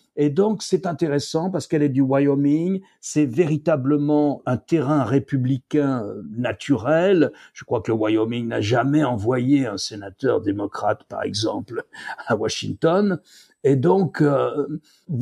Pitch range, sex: 125-175 Hz, male